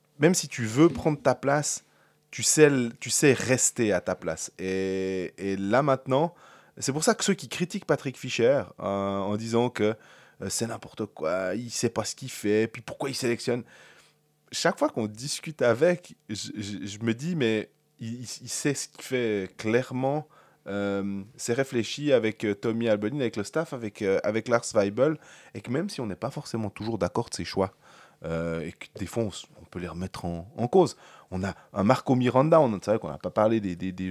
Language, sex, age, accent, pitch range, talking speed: French, male, 20-39, French, 100-135 Hz, 210 wpm